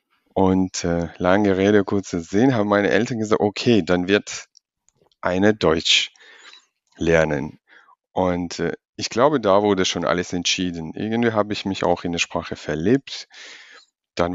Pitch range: 90-105 Hz